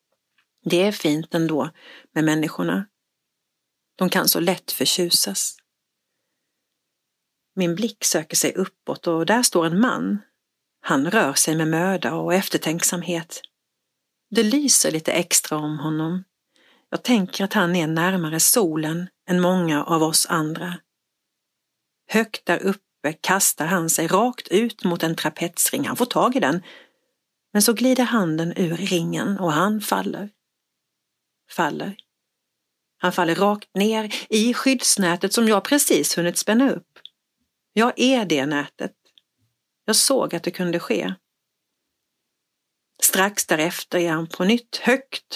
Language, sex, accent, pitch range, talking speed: Swedish, female, native, 165-215 Hz, 135 wpm